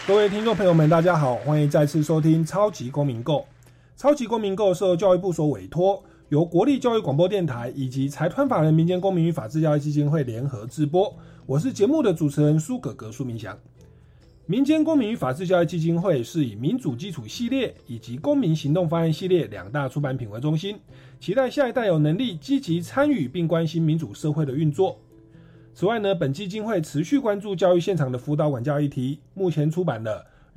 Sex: male